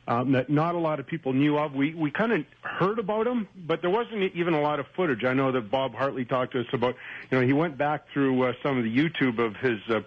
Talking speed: 280 wpm